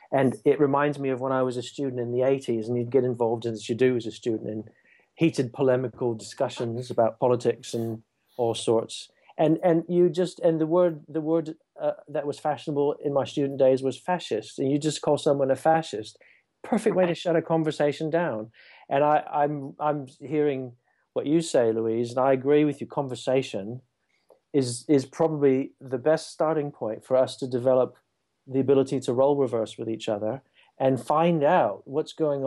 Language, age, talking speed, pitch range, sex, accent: English, 40-59, 195 wpm, 125-155 Hz, male, British